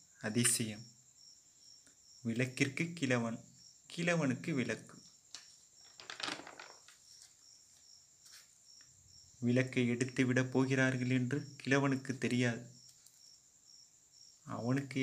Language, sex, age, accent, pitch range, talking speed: Tamil, male, 30-49, native, 115-135 Hz, 50 wpm